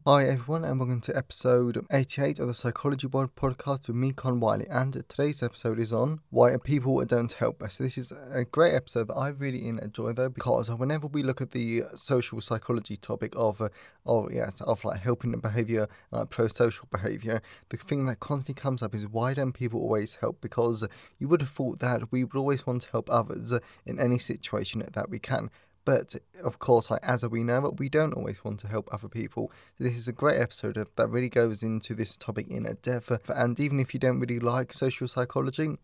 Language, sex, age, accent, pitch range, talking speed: English, male, 20-39, British, 115-130 Hz, 205 wpm